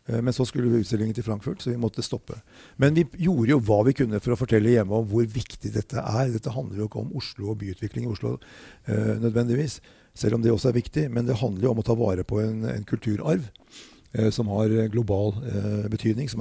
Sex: male